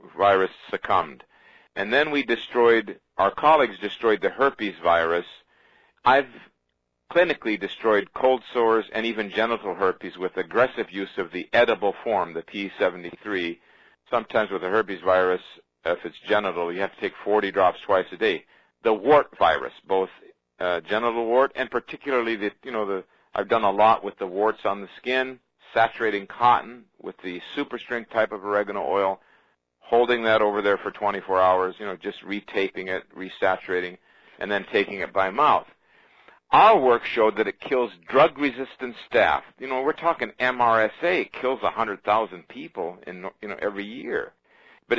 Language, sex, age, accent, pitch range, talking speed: English, male, 50-69, American, 95-140 Hz, 160 wpm